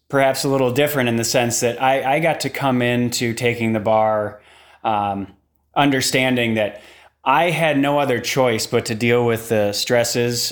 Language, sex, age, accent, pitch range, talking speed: English, male, 30-49, American, 105-125 Hz, 175 wpm